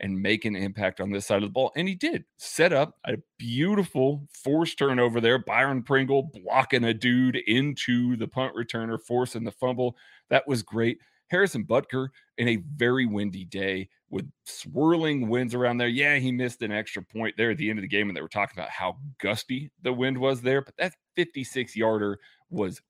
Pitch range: 110-135 Hz